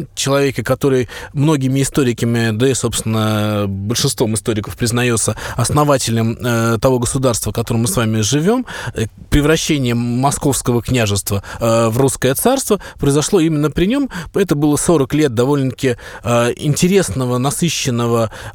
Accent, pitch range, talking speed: native, 125-170 Hz, 115 wpm